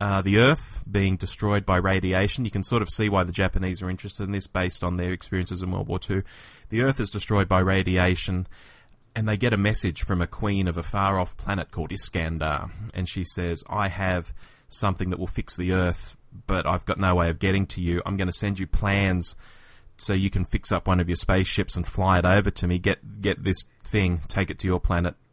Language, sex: English, male